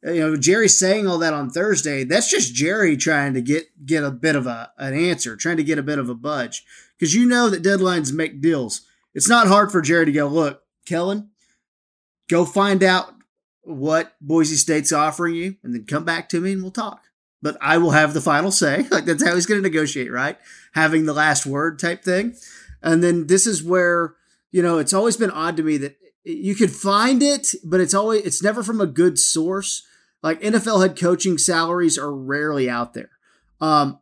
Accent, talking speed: American, 210 wpm